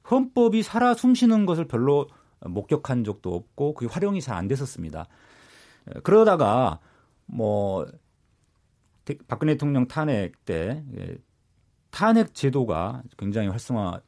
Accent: native